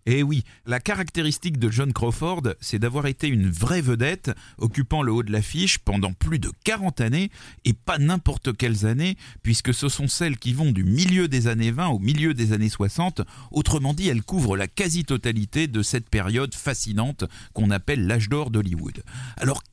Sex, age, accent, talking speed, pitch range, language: male, 40-59, French, 185 wpm, 100-140 Hz, French